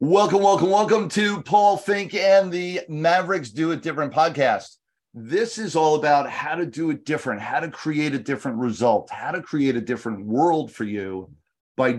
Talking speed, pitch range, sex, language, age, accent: 185 wpm, 115-150 Hz, male, English, 40-59, American